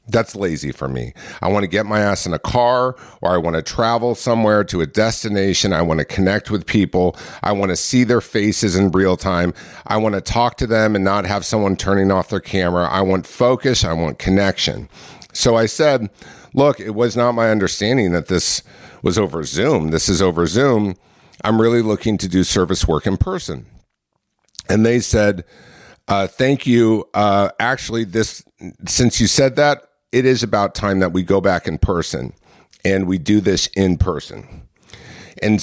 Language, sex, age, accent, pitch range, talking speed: English, male, 50-69, American, 95-115 Hz, 190 wpm